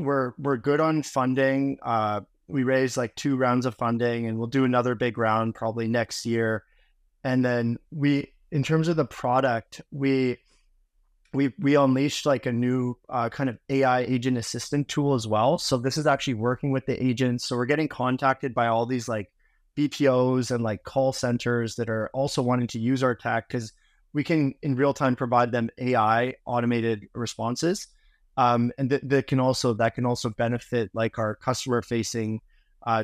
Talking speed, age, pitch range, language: 185 wpm, 20-39, 120-140 Hz, English